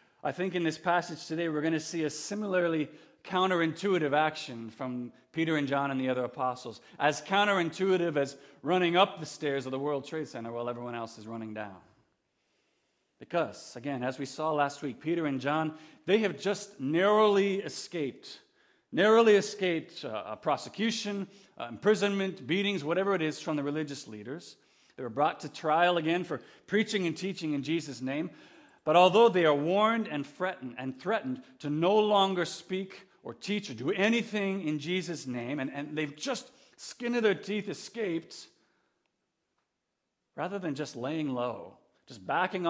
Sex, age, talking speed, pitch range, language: male, 40-59, 165 wpm, 145-195 Hz, English